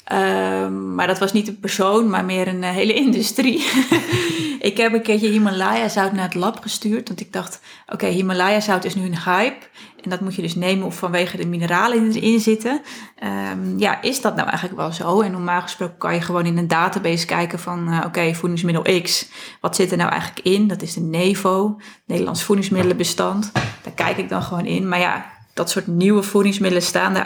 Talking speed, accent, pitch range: 195 wpm, Dutch, 175-205 Hz